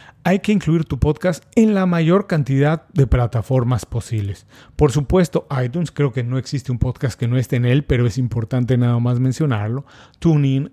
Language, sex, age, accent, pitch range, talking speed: Spanish, male, 40-59, Mexican, 125-155 Hz, 185 wpm